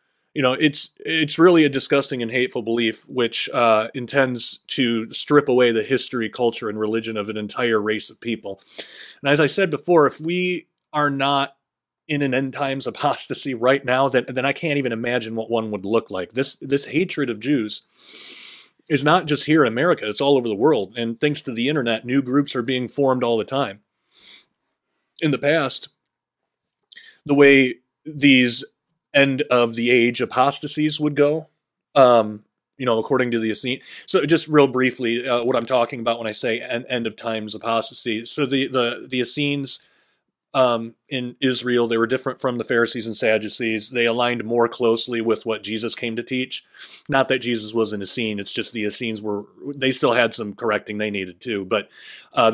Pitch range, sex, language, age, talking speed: 115-140 Hz, male, English, 30-49, 190 wpm